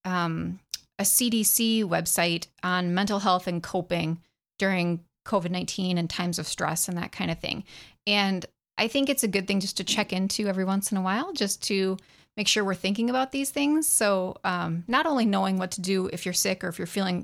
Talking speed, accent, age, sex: 210 wpm, American, 30-49, female